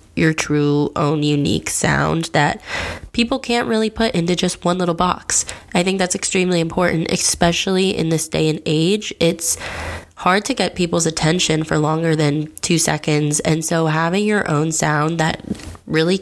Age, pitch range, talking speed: 20-39, 155-180 Hz, 165 wpm